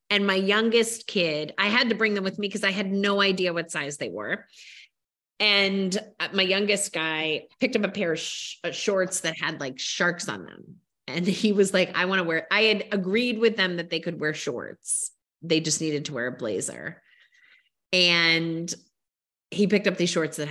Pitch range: 170-225 Hz